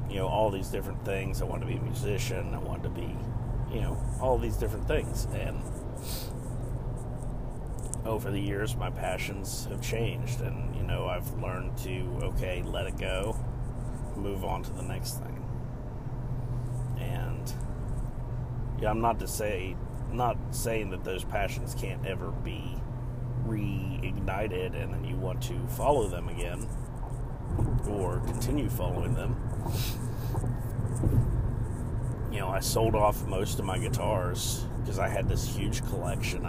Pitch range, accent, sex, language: 115-125 Hz, American, male, English